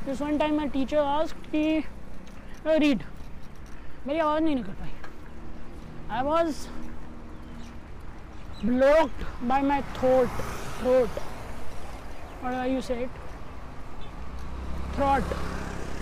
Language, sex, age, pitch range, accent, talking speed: Hindi, female, 20-39, 245-310 Hz, native, 85 wpm